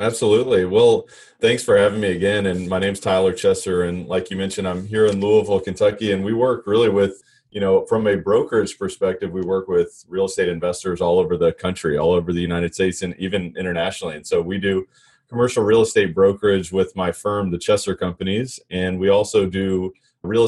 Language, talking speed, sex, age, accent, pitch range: English, 205 wpm, male, 30-49, American, 95-130 Hz